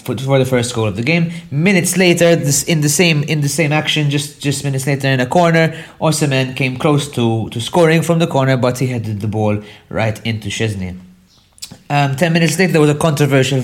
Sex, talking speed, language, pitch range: male, 215 wpm, English, 115-160 Hz